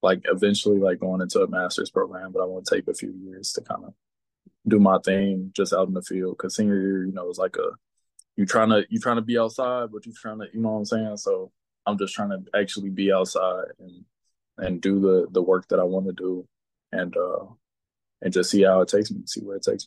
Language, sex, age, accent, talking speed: English, male, 20-39, American, 255 wpm